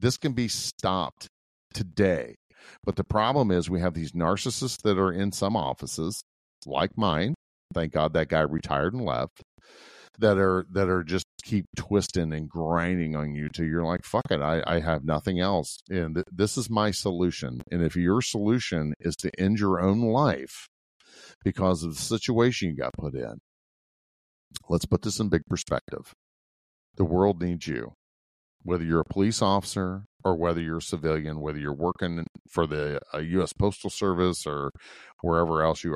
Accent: American